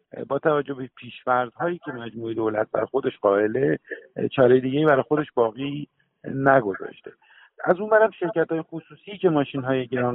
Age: 50-69